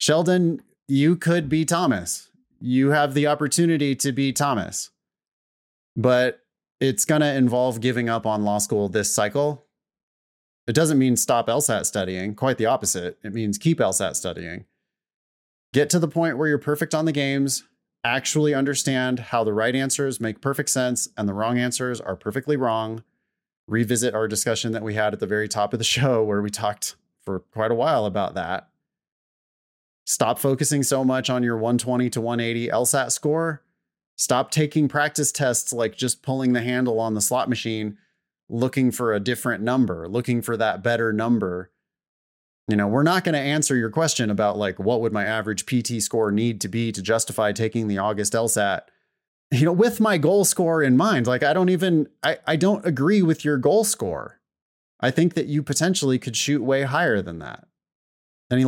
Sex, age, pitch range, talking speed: male, 30-49, 110-150 Hz, 180 wpm